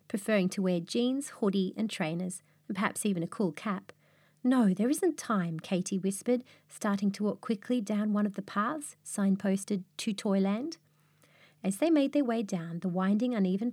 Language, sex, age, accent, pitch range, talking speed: English, female, 30-49, Australian, 175-230 Hz, 175 wpm